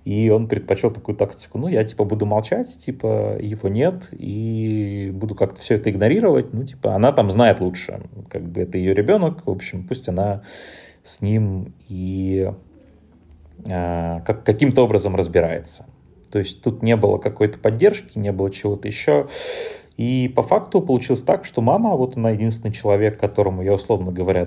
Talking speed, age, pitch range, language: 165 wpm, 30-49, 95-120 Hz, Russian